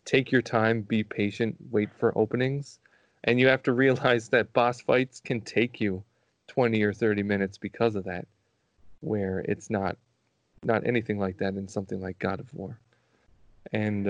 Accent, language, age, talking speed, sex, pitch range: American, English, 20-39, 170 wpm, male, 105-120 Hz